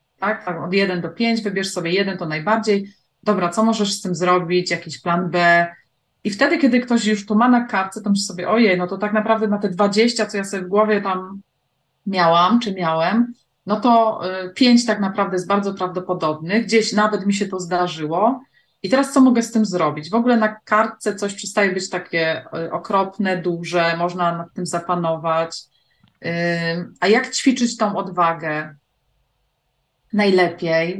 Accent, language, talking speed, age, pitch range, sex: native, Polish, 175 wpm, 30-49, 175-215 Hz, female